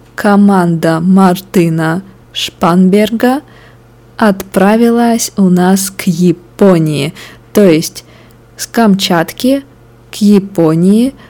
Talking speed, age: 75 wpm, 20-39